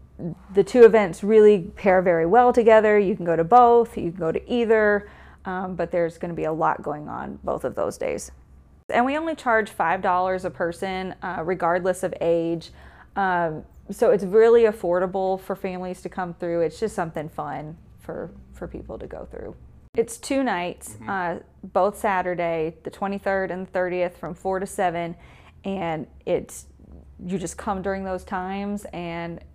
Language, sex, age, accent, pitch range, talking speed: English, female, 30-49, American, 175-215 Hz, 175 wpm